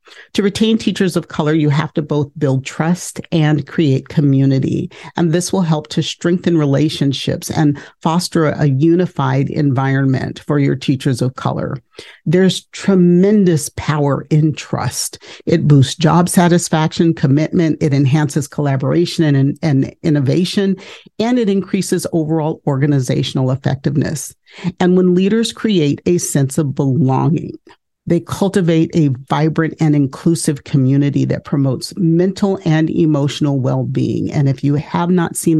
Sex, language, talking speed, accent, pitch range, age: male, English, 135 wpm, American, 140-170 Hz, 50-69